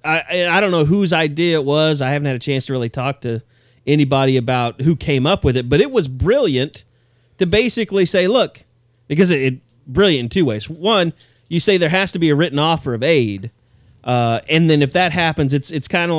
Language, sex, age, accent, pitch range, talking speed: English, male, 30-49, American, 125-160 Hz, 225 wpm